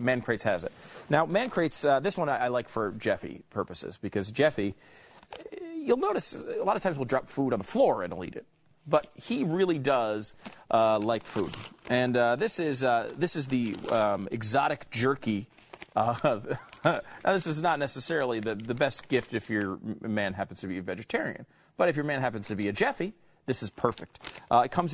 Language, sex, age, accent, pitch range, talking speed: English, male, 30-49, American, 105-145 Hz, 200 wpm